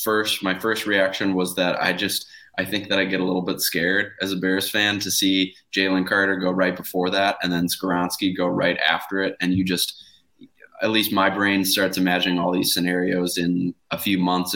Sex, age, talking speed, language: male, 20-39, 215 wpm, English